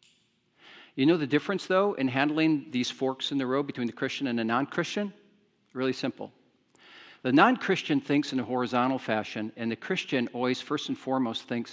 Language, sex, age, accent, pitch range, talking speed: English, male, 50-69, American, 120-170 Hz, 180 wpm